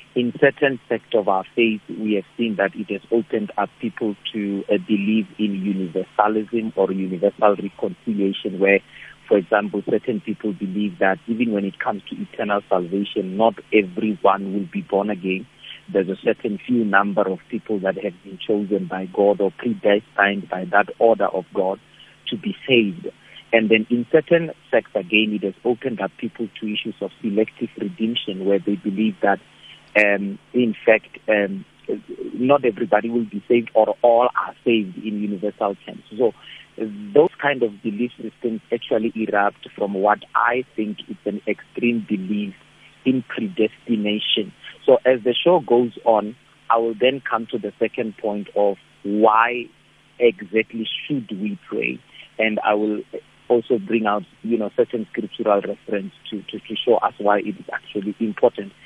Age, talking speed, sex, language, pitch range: 50-69, 165 wpm, male, English, 100-115 Hz